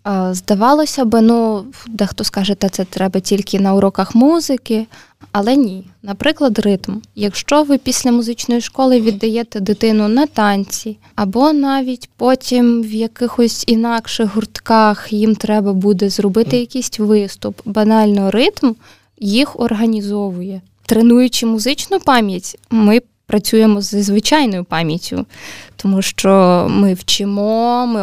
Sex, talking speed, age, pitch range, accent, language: female, 120 wpm, 20-39, 200-245 Hz, native, Ukrainian